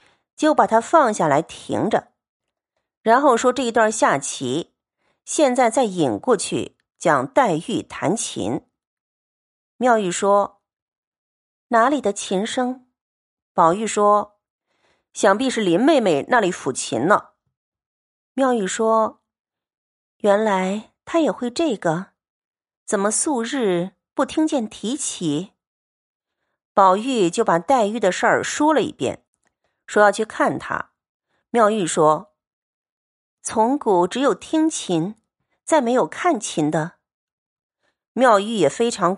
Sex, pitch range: female, 190-260 Hz